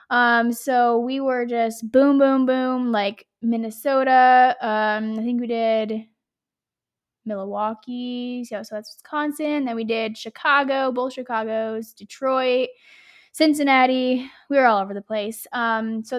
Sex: female